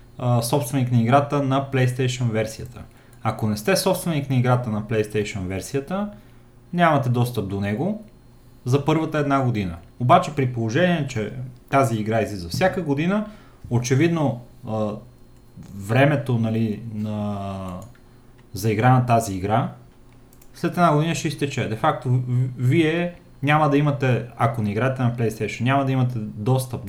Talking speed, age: 135 wpm, 30-49